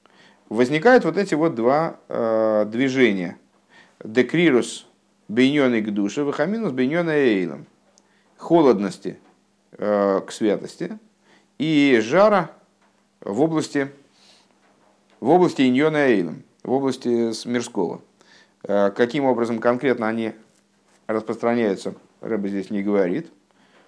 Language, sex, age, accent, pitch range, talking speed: Russian, male, 50-69, native, 105-135 Hz, 95 wpm